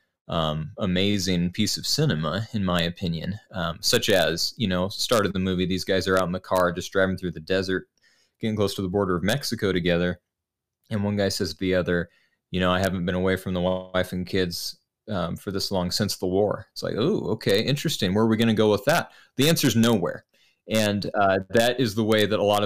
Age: 20-39